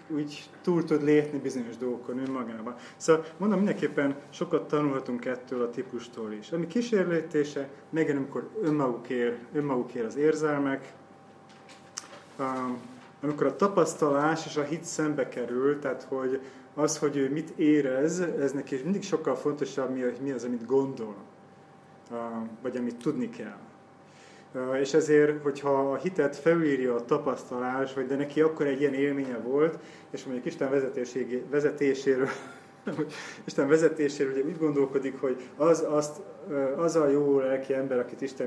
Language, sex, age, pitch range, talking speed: Hungarian, male, 30-49, 130-150 Hz, 135 wpm